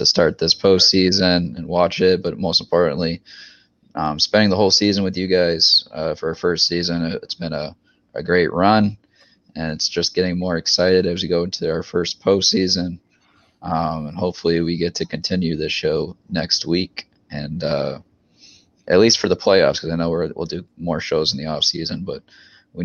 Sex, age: male, 20-39